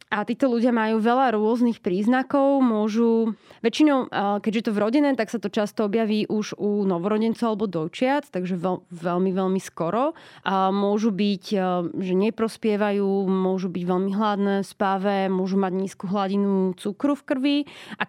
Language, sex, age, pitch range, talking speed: Slovak, female, 20-39, 195-235 Hz, 150 wpm